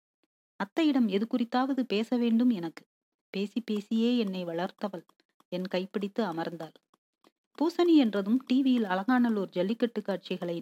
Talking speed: 105 wpm